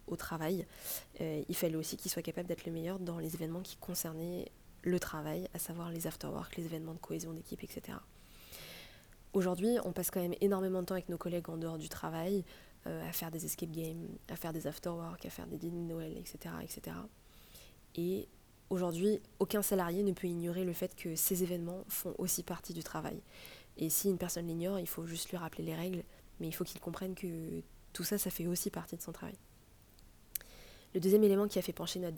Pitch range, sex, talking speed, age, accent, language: 165-185 Hz, female, 215 wpm, 20-39, French, French